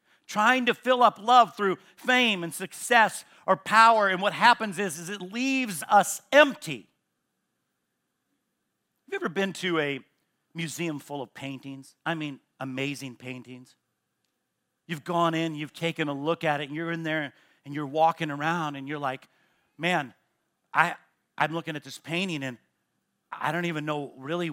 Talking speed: 160 wpm